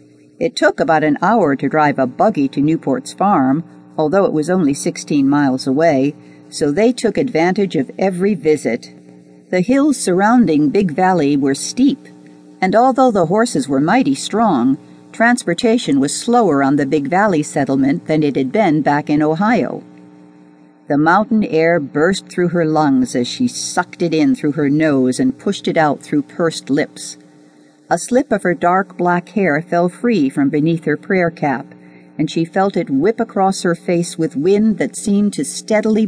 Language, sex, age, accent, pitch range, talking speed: English, female, 50-69, American, 140-195 Hz, 175 wpm